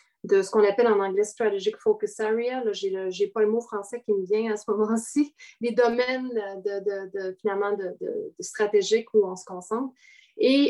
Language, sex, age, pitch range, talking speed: English, female, 30-49, 205-260 Hz, 215 wpm